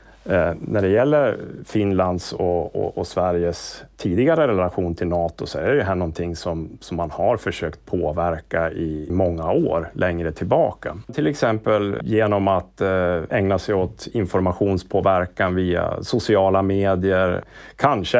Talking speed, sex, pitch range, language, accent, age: 135 wpm, male, 85-100 Hz, Swedish, Norwegian, 30-49